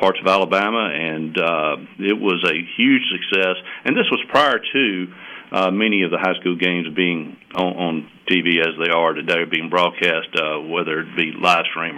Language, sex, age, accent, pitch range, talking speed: English, male, 50-69, American, 90-110 Hz, 190 wpm